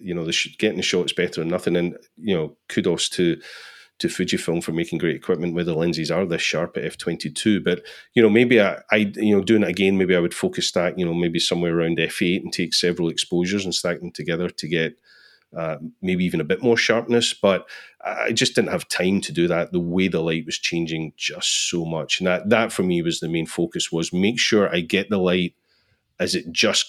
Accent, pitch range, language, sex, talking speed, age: British, 85-100 Hz, English, male, 230 wpm, 30-49